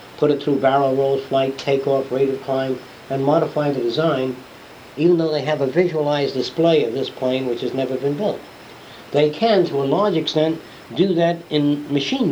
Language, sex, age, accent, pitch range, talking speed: English, male, 60-79, American, 125-170 Hz, 190 wpm